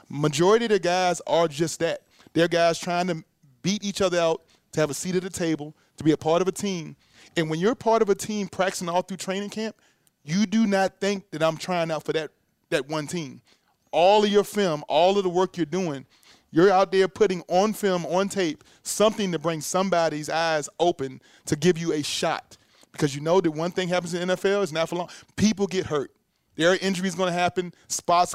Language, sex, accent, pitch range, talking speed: English, male, American, 160-190 Hz, 225 wpm